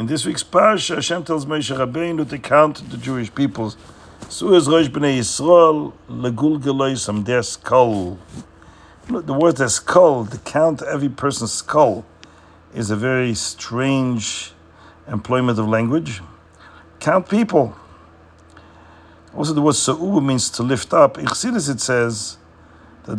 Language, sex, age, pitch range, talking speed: English, male, 50-69, 85-140 Hz, 120 wpm